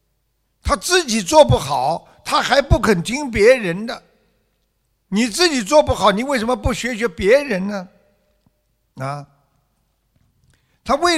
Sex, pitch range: male, 150-230 Hz